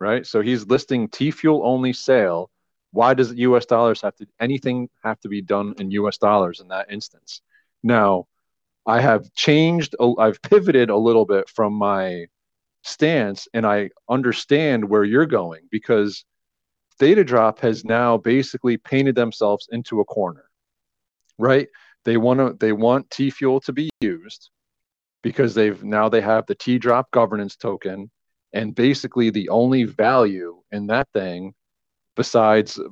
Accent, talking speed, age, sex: American, 150 wpm, 30-49, male